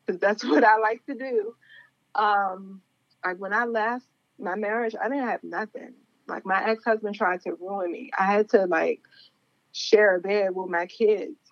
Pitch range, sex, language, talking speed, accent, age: 190-235 Hz, female, English, 175 wpm, American, 20-39